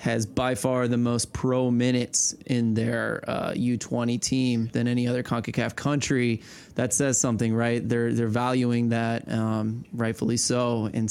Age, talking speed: 20-39, 155 wpm